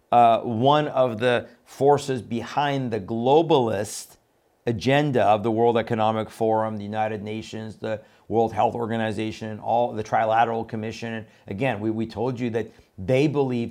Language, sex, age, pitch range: English, male, 50-69, 115-135 Hz